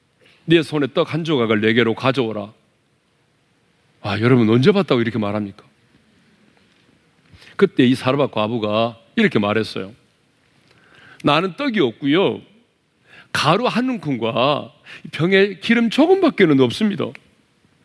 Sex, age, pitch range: male, 40-59, 110-180 Hz